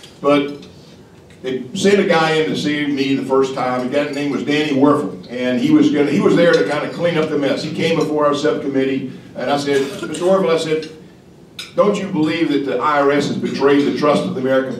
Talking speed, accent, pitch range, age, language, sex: 225 wpm, American, 135-160 Hz, 50-69, English, male